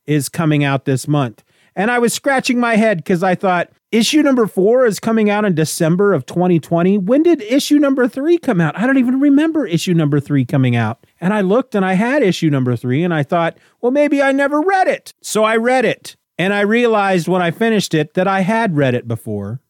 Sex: male